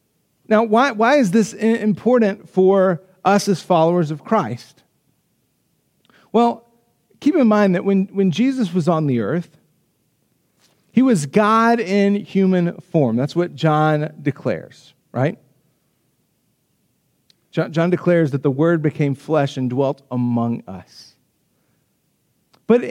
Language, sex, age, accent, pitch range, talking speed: Russian, male, 40-59, American, 155-210 Hz, 125 wpm